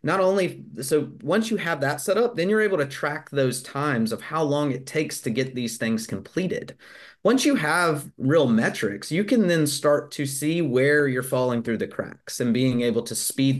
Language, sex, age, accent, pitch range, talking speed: English, male, 30-49, American, 125-155 Hz, 210 wpm